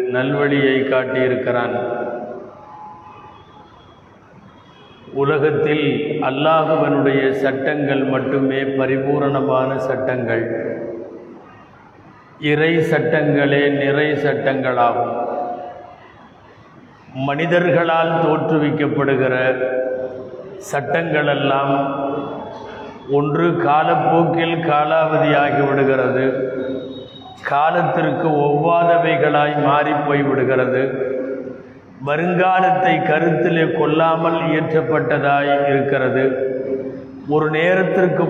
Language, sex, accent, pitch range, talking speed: Tamil, male, native, 135-165 Hz, 45 wpm